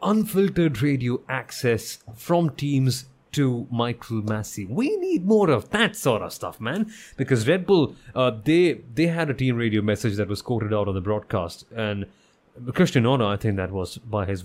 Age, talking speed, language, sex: 30-49, 185 wpm, English, male